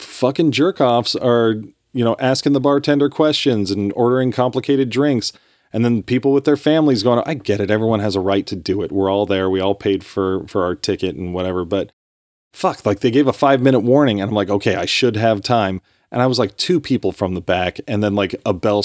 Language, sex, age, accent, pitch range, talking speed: English, male, 30-49, American, 95-120 Hz, 230 wpm